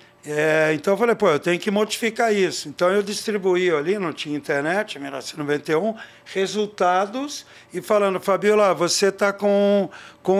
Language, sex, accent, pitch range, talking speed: Portuguese, male, Brazilian, 160-205 Hz, 150 wpm